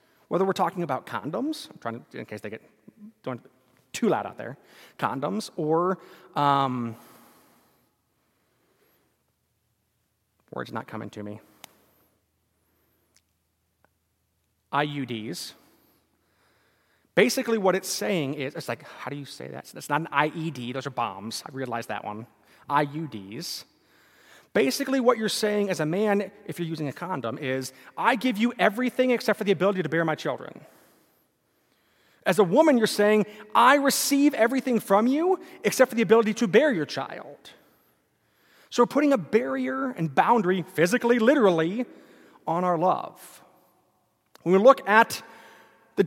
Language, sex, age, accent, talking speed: English, male, 30-49, American, 145 wpm